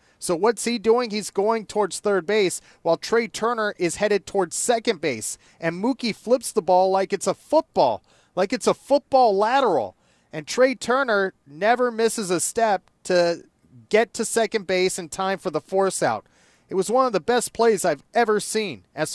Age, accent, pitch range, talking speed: 30-49, American, 170-220 Hz, 190 wpm